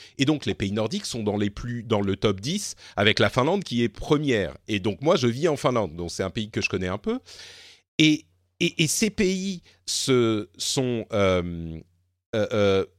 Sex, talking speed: male, 205 wpm